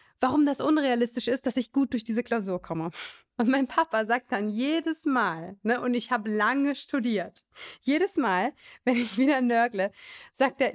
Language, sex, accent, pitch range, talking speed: German, female, German, 220-280 Hz, 175 wpm